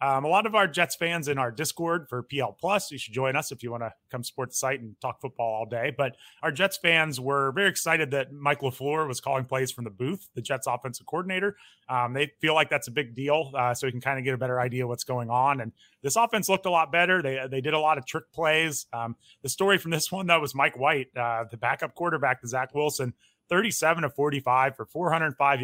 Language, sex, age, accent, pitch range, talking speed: English, male, 30-49, American, 125-155 Hz, 255 wpm